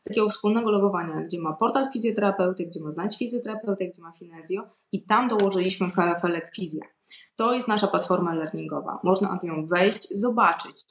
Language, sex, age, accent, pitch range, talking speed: Polish, female, 20-39, native, 180-220 Hz, 160 wpm